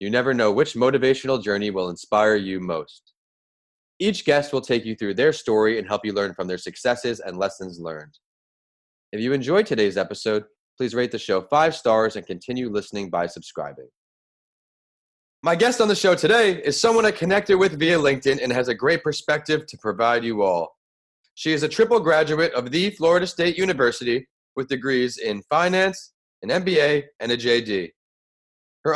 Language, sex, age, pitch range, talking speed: English, male, 30-49, 110-165 Hz, 180 wpm